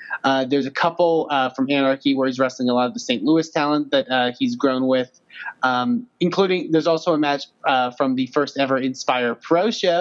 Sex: male